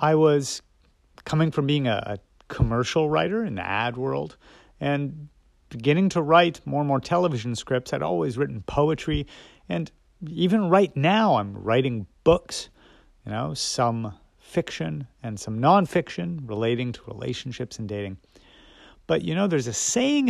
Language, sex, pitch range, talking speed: English, male, 105-175 Hz, 145 wpm